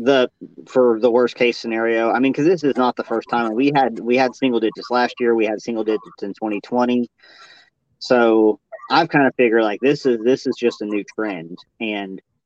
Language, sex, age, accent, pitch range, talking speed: English, male, 40-59, American, 110-130 Hz, 210 wpm